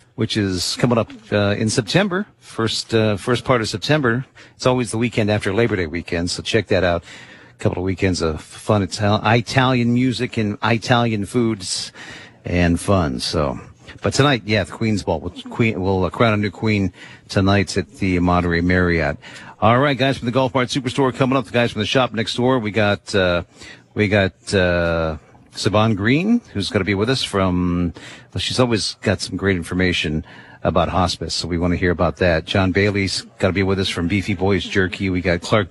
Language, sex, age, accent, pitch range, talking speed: English, male, 50-69, American, 90-120 Hz, 205 wpm